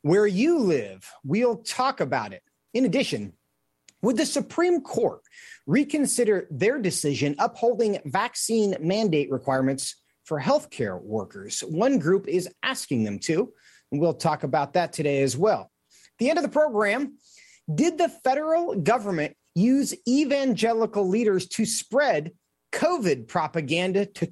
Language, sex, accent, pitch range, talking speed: English, male, American, 170-250 Hz, 135 wpm